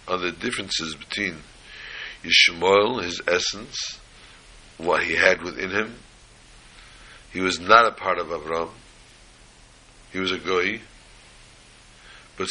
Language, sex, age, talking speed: English, male, 60-79, 115 wpm